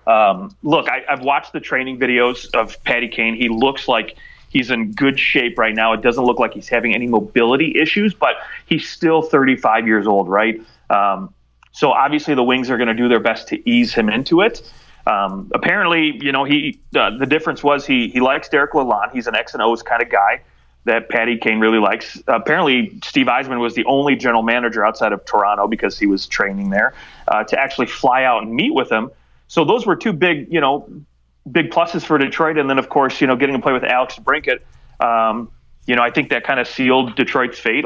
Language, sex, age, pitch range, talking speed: English, male, 30-49, 115-150 Hz, 215 wpm